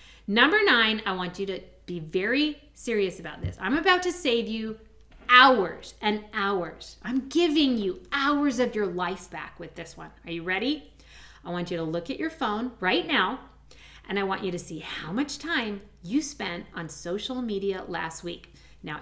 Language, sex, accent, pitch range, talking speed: English, female, American, 180-270 Hz, 190 wpm